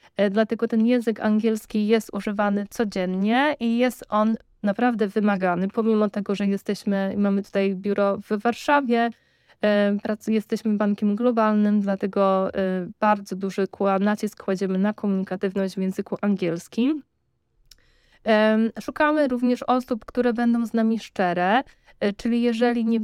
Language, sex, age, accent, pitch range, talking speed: Polish, female, 20-39, native, 205-240 Hz, 115 wpm